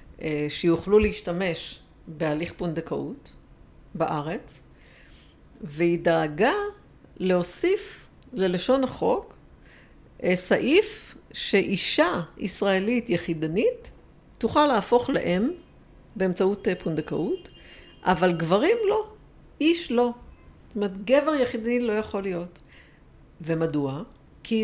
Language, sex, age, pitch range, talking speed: Hebrew, female, 50-69, 170-225 Hz, 80 wpm